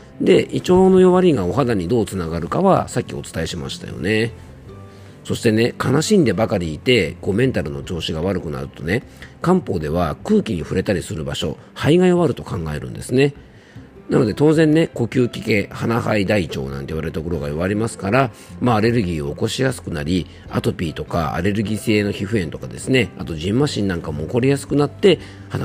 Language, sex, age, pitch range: Japanese, male, 40-59, 85-130 Hz